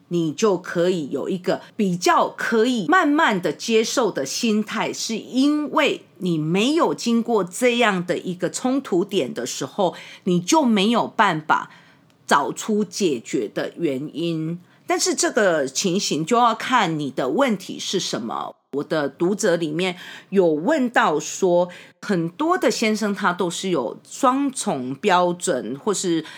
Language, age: English, 40-59